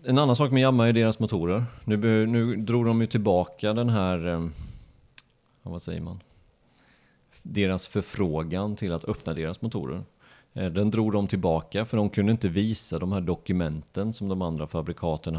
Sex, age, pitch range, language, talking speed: male, 30-49, 85-110 Hz, Swedish, 160 wpm